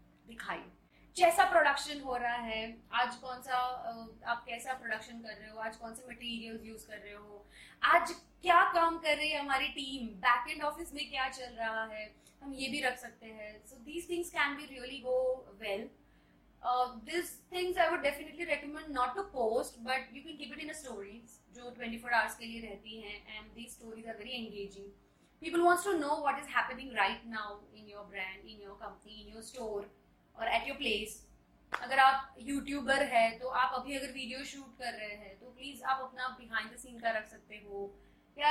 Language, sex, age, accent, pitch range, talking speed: Hindi, female, 20-39, native, 225-280 Hz, 135 wpm